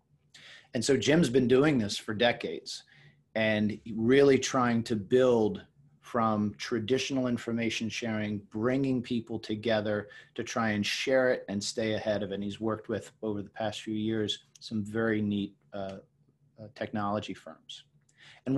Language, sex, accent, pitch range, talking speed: English, male, American, 105-125 Hz, 150 wpm